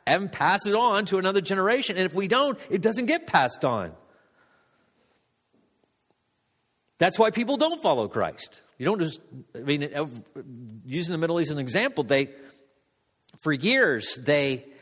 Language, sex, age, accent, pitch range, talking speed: English, male, 50-69, American, 125-180 Hz, 155 wpm